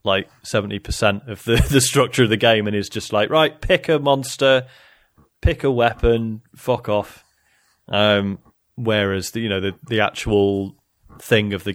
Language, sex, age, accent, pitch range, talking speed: English, male, 30-49, British, 100-120 Hz, 175 wpm